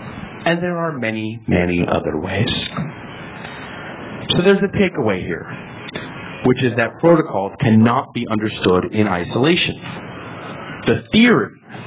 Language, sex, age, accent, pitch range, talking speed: English, male, 40-59, American, 100-140 Hz, 115 wpm